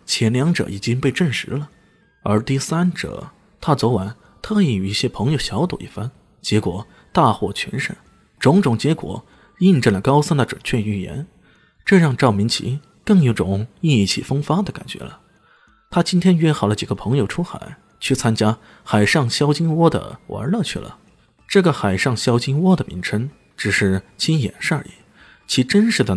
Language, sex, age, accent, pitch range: Chinese, male, 20-39, native, 105-165 Hz